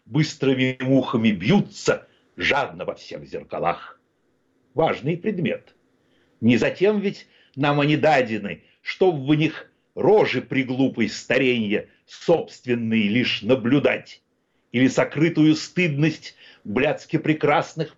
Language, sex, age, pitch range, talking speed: Russian, male, 60-79, 135-210 Hz, 95 wpm